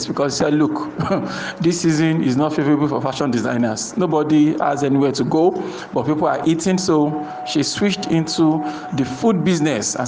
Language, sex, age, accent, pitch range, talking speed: English, male, 50-69, Nigerian, 145-180 Hz, 175 wpm